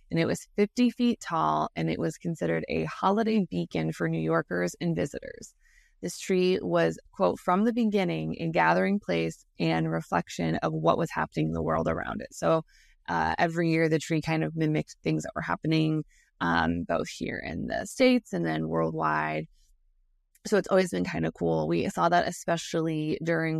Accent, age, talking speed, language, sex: American, 20-39, 185 wpm, English, female